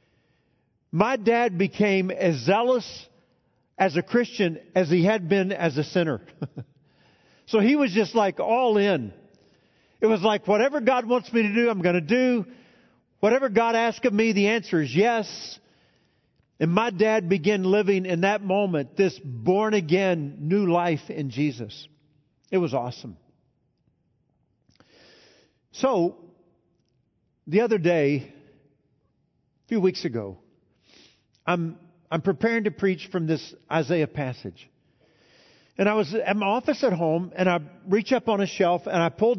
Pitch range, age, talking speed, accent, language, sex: 150-210 Hz, 50-69, 150 wpm, American, English, male